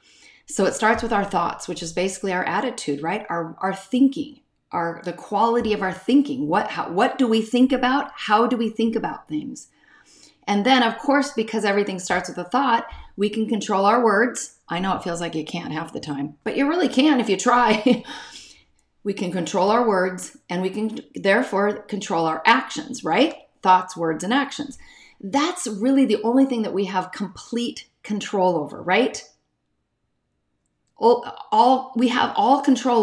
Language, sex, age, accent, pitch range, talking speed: English, female, 40-59, American, 200-270 Hz, 185 wpm